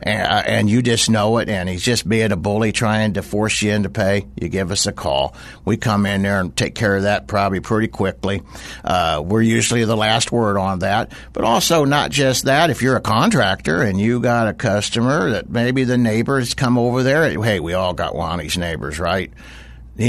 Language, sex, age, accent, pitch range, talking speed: English, male, 60-79, American, 100-120 Hz, 210 wpm